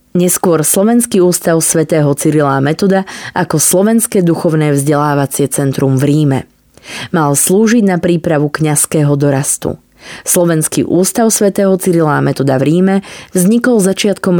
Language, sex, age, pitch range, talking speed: Slovak, female, 20-39, 150-185 Hz, 120 wpm